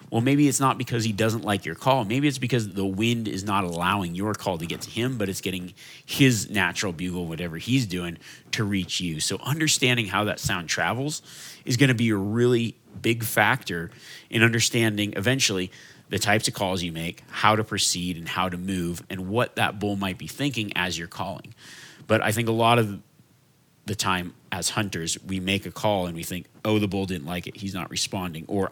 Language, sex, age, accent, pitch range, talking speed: English, male, 30-49, American, 90-120 Hz, 215 wpm